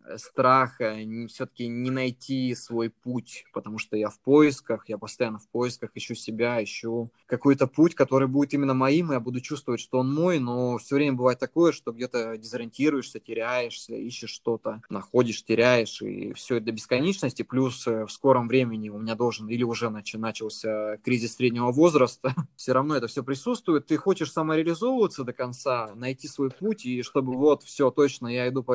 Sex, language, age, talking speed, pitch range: male, Russian, 20-39, 175 wpm, 115-140 Hz